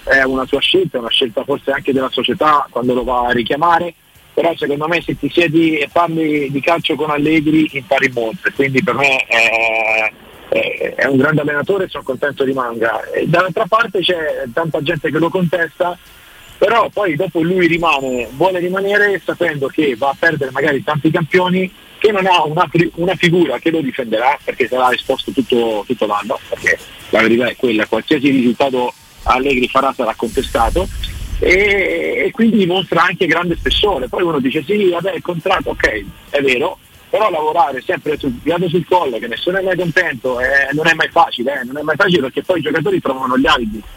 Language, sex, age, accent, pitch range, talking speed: Italian, male, 40-59, native, 135-180 Hz, 190 wpm